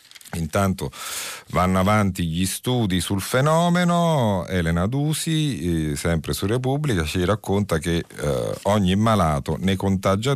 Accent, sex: native, male